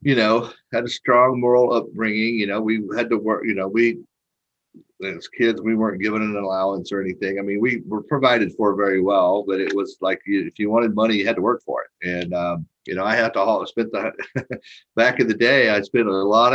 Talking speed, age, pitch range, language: 240 wpm, 50-69, 95-110 Hz, English